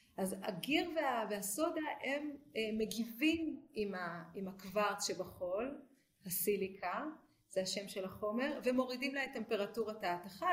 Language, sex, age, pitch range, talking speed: Hebrew, female, 30-49, 185-245 Hz, 105 wpm